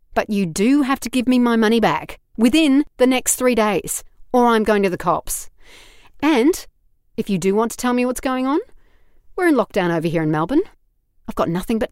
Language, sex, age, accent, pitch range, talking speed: English, female, 40-59, Australian, 195-270 Hz, 215 wpm